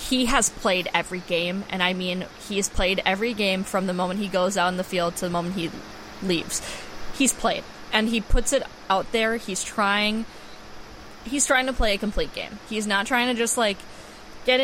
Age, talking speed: 20-39, 205 wpm